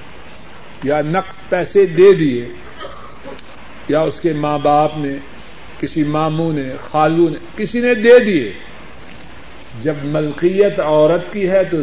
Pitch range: 150-190 Hz